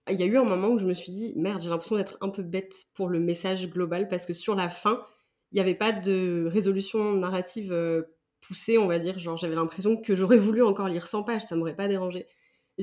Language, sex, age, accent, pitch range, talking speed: French, female, 20-39, French, 170-200 Hz, 255 wpm